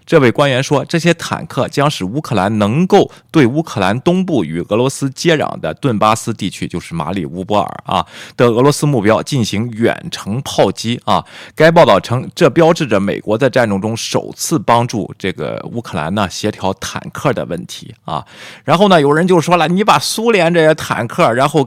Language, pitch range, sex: Chinese, 105-150 Hz, male